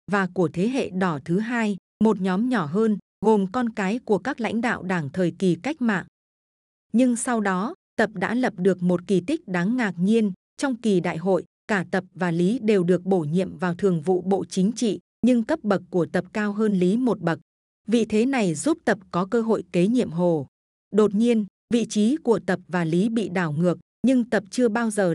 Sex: female